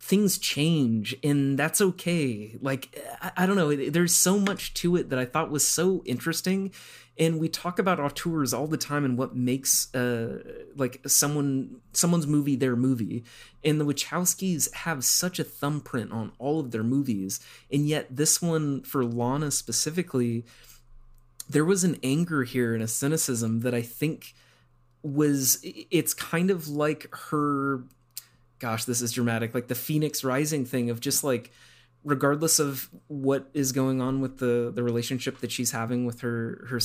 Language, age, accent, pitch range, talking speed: English, 30-49, American, 120-150 Hz, 170 wpm